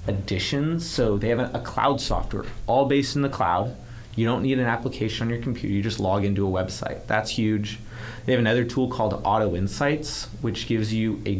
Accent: American